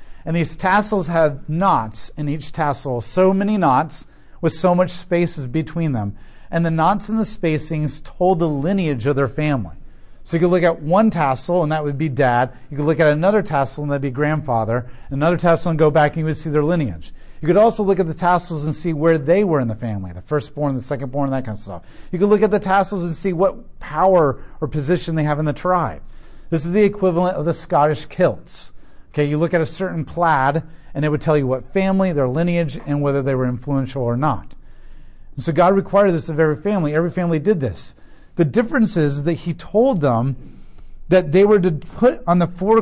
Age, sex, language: 40-59, male, English